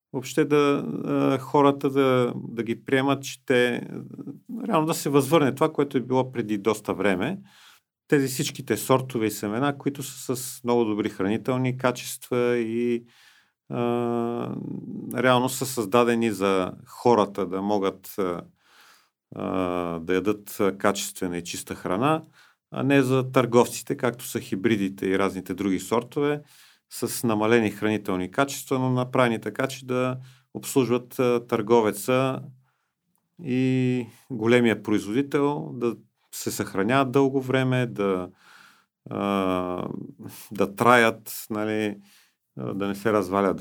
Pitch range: 100-135 Hz